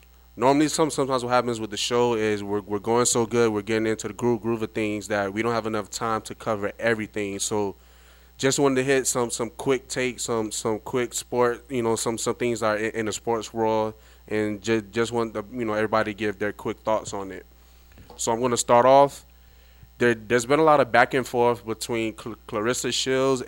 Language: English